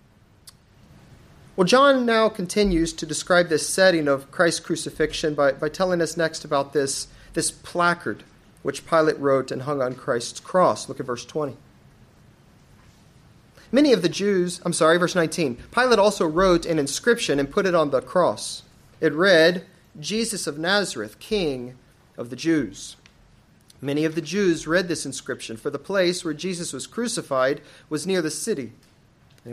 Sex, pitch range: male, 140-185 Hz